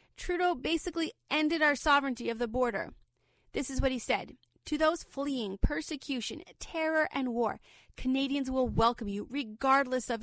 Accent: American